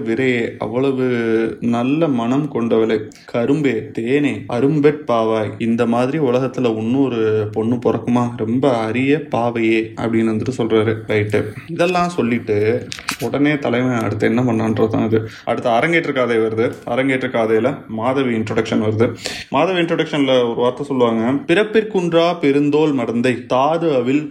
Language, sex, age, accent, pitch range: Tamil, male, 20-39, native, 110-130 Hz